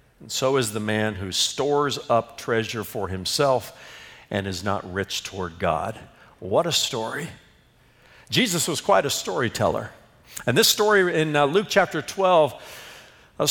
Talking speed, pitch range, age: 150 wpm, 120-175 Hz, 50-69